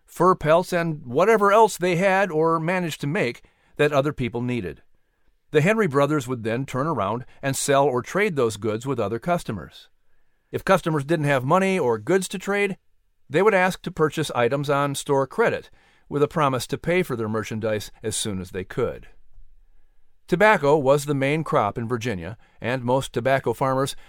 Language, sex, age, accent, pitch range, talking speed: English, male, 50-69, American, 120-165 Hz, 180 wpm